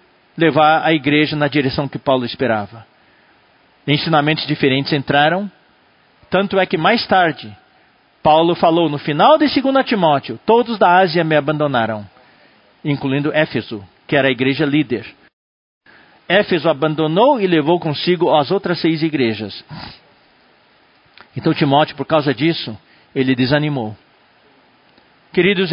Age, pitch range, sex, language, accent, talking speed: 50-69, 135-175 Hz, male, Portuguese, Brazilian, 120 wpm